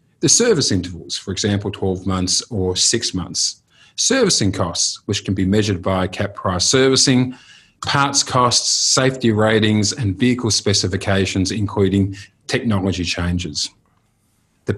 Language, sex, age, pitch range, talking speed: English, male, 40-59, 95-115 Hz, 125 wpm